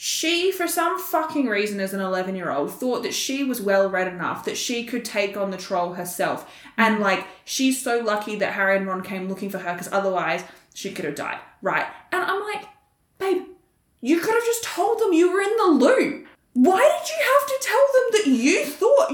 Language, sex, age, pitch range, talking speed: English, female, 10-29, 245-360 Hz, 220 wpm